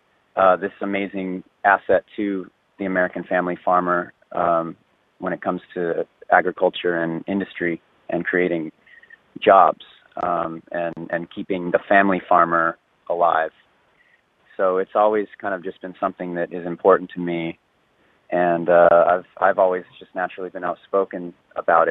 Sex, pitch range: male, 85-95 Hz